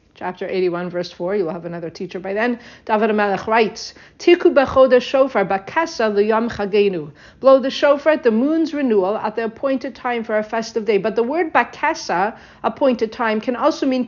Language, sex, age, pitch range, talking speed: English, female, 50-69, 205-275 Hz, 190 wpm